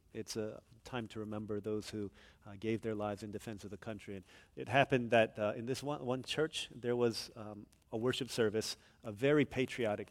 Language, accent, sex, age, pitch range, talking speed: English, American, male, 40-59, 100-120 Hz, 210 wpm